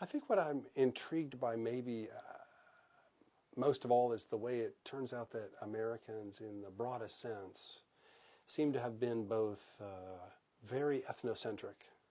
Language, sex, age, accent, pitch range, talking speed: English, male, 40-59, American, 100-130 Hz, 155 wpm